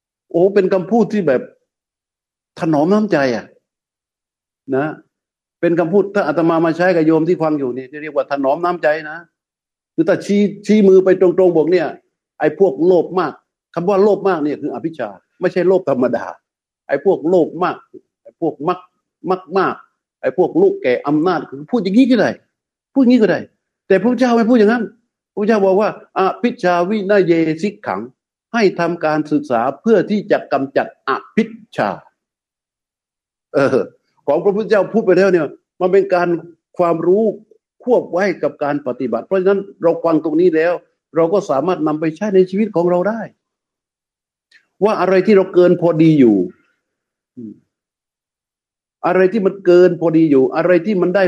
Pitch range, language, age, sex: 165-205 Hz, Thai, 60-79, male